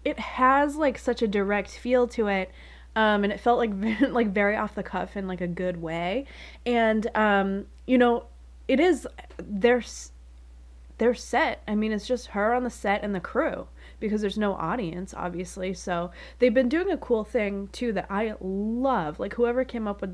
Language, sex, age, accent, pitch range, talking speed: English, female, 20-39, American, 180-225 Hz, 190 wpm